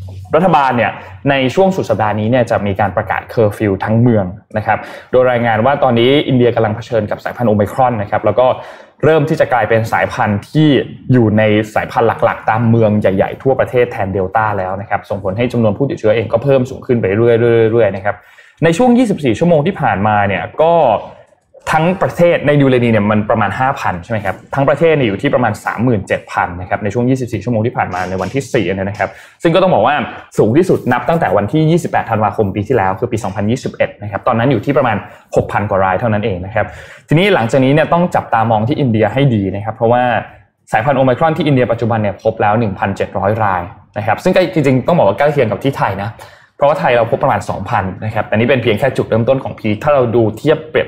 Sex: male